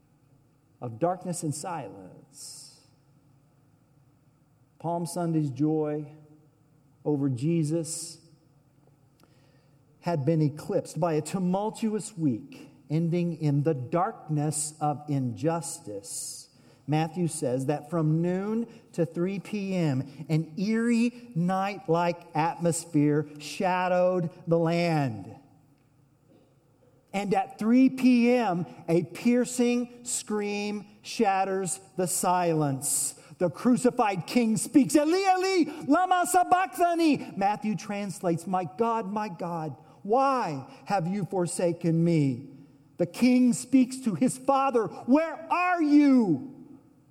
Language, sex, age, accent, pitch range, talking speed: English, male, 50-69, American, 150-245 Hz, 95 wpm